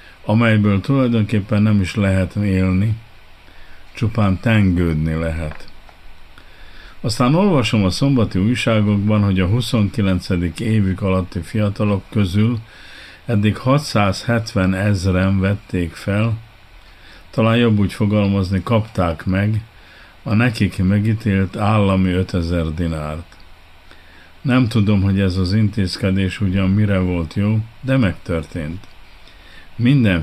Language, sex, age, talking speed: Hungarian, male, 50-69, 100 wpm